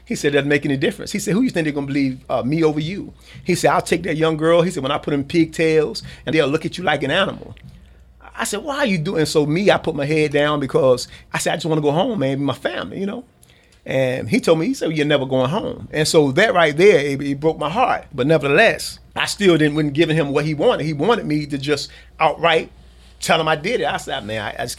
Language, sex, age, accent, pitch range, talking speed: English, male, 40-59, American, 140-175 Hz, 295 wpm